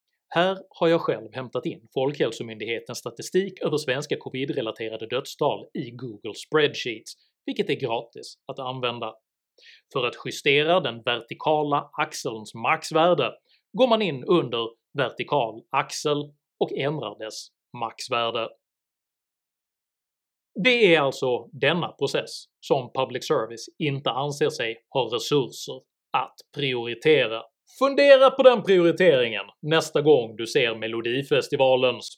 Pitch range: 110-165 Hz